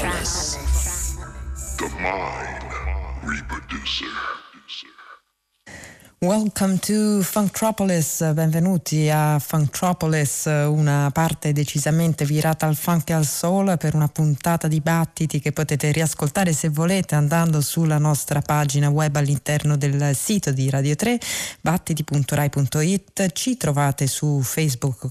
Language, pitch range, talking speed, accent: Italian, 145-180 Hz, 100 wpm, native